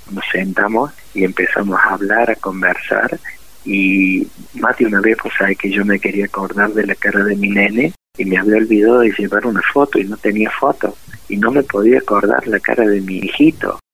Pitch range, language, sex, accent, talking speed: 95-105 Hz, Spanish, male, Argentinian, 205 wpm